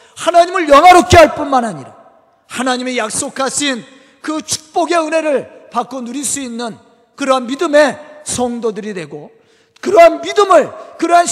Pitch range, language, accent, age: 230-310 Hz, Korean, native, 40-59